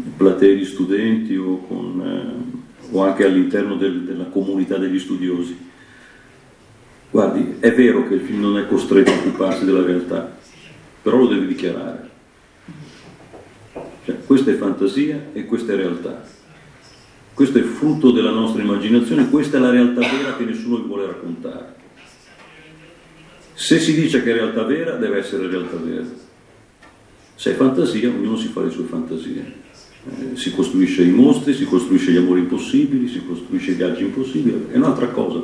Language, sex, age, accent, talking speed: Italian, male, 50-69, native, 155 wpm